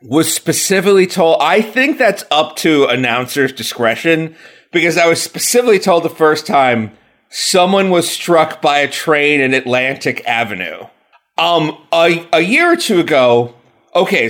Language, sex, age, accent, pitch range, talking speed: English, male, 30-49, American, 145-215 Hz, 145 wpm